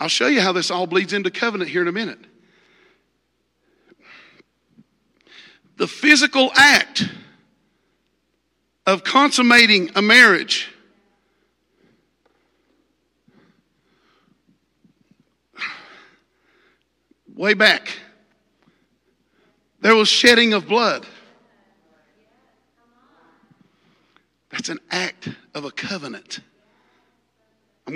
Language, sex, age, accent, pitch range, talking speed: English, male, 50-69, American, 165-230 Hz, 75 wpm